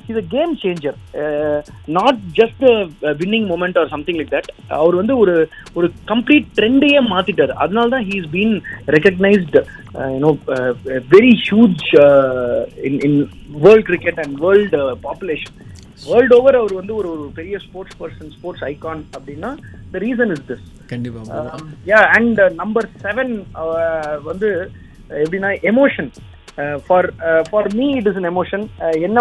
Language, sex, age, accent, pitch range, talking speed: Tamil, male, 30-49, native, 150-220 Hz, 145 wpm